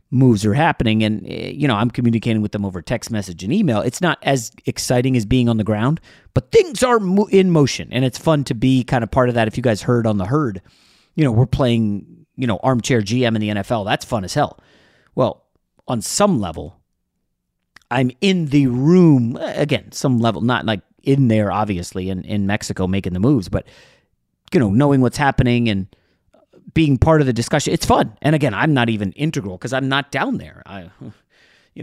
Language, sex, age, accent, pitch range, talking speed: English, male, 30-49, American, 100-140 Hz, 205 wpm